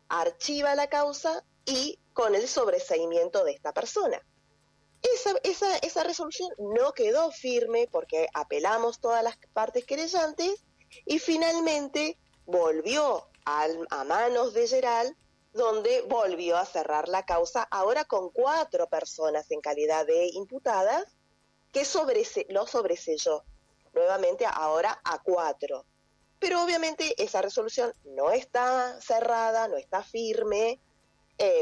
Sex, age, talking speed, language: female, 30-49, 120 wpm, Spanish